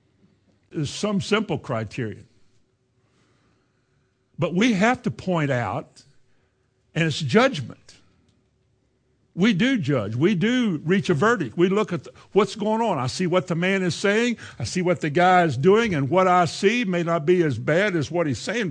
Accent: American